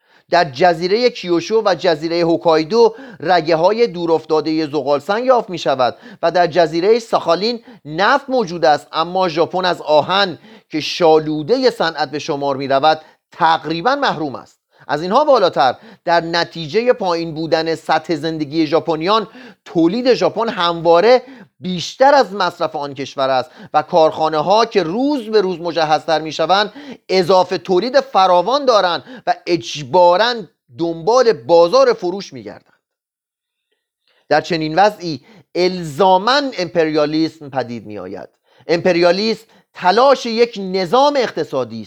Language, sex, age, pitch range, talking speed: Persian, male, 40-59, 160-225 Hz, 125 wpm